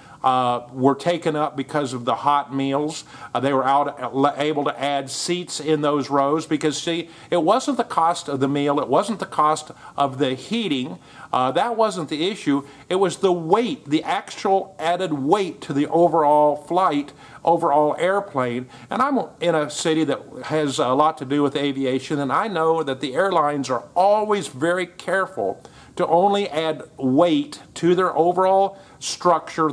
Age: 50-69